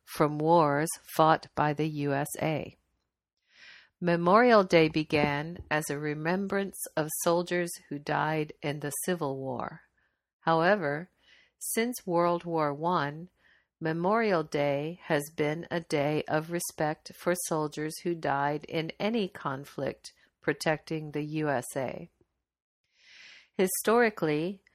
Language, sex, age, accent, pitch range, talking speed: English, female, 50-69, American, 150-175 Hz, 105 wpm